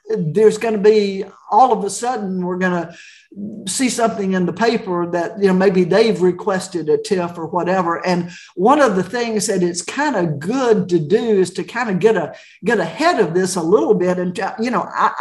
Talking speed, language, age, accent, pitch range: 210 wpm, English, 50-69, American, 170-215 Hz